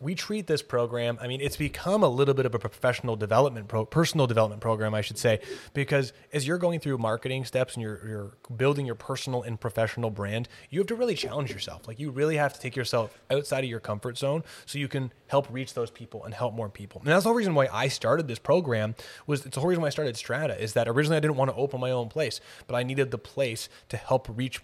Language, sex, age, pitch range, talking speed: English, male, 20-39, 120-145 Hz, 255 wpm